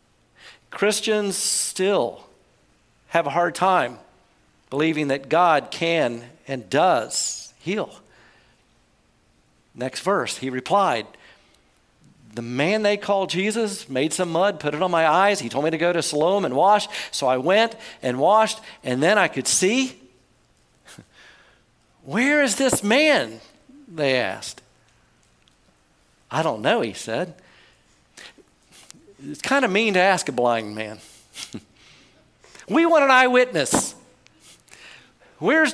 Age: 50-69